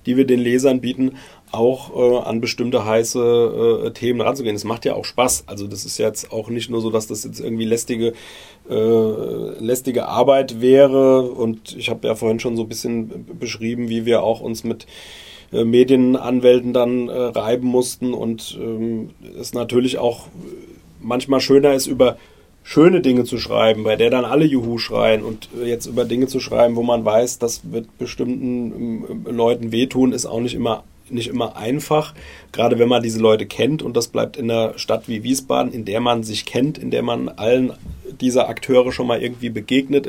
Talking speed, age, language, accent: 190 wpm, 30-49, German, German